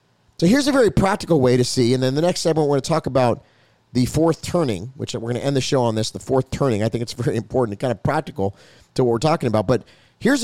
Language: English